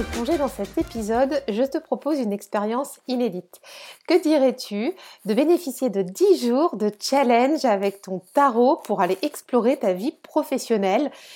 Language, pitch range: French, 220-280 Hz